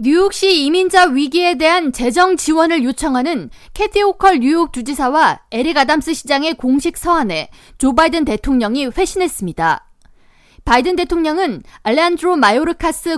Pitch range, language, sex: 230-325 Hz, Korean, female